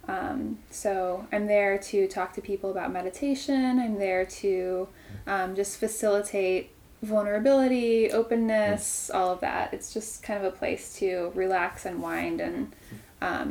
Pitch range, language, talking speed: 190-220 Hz, English, 145 wpm